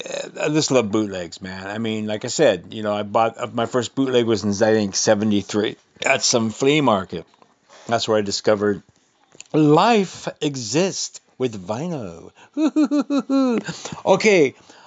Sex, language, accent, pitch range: male, English, American, 115-165 Hz